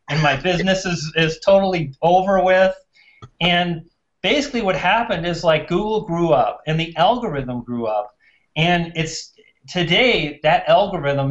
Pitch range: 145-180 Hz